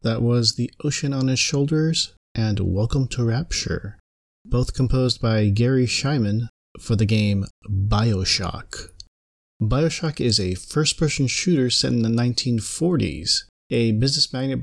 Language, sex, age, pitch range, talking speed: English, male, 30-49, 95-125 Hz, 130 wpm